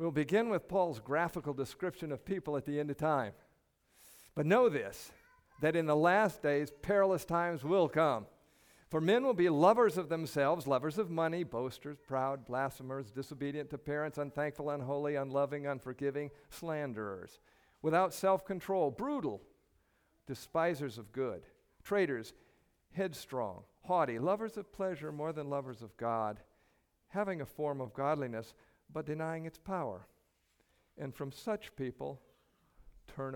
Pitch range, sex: 135-175 Hz, male